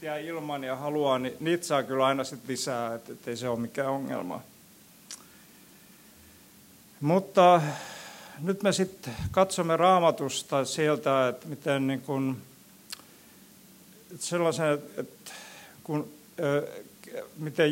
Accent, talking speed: native, 105 wpm